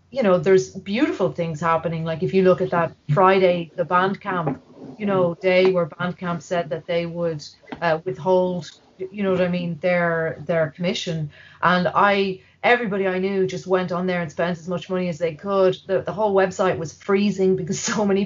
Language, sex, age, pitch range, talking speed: English, female, 30-49, 165-190 Hz, 205 wpm